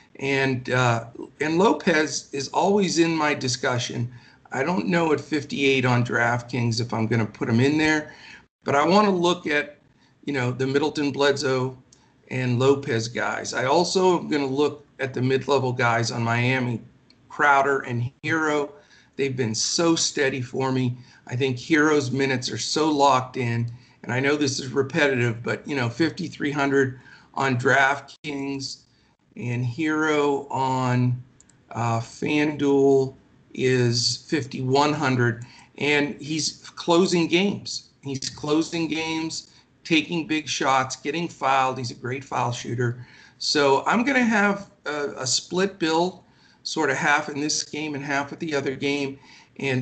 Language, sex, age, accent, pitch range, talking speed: English, male, 50-69, American, 125-150 Hz, 150 wpm